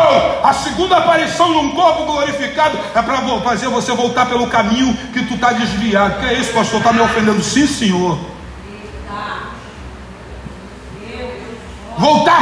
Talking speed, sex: 130 wpm, male